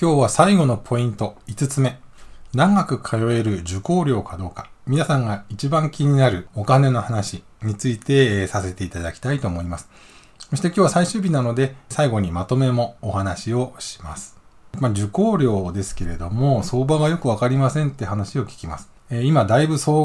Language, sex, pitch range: Japanese, male, 105-140 Hz